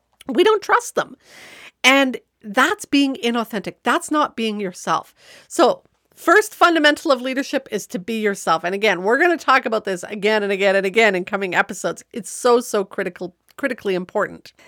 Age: 50-69